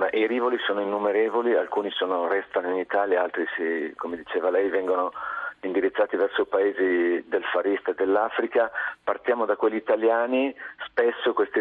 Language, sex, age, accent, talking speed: Italian, male, 50-69, native, 145 wpm